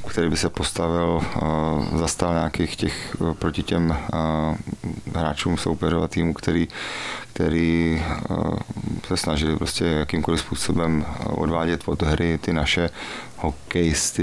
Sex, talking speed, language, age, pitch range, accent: male, 100 wpm, Czech, 30-49, 80-85 Hz, native